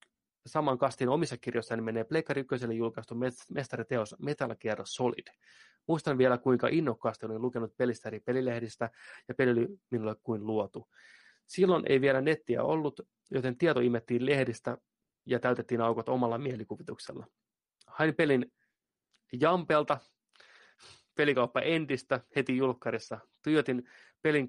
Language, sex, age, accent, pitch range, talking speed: Finnish, male, 30-49, native, 110-140 Hz, 125 wpm